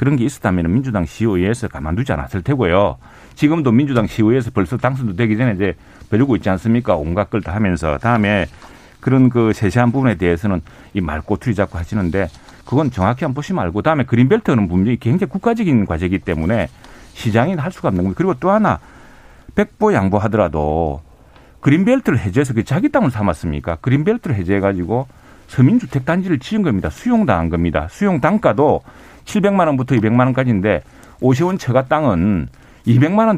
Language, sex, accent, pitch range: Korean, male, native, 95-140 Hz